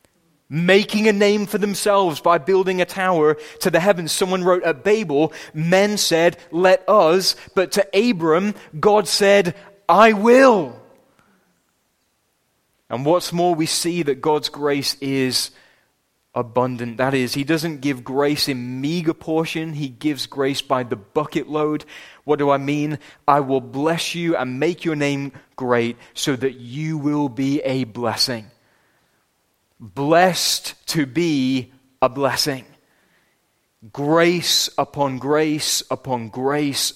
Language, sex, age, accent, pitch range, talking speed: English, male, 20-39, British, 130-165 Hz, 135 wpm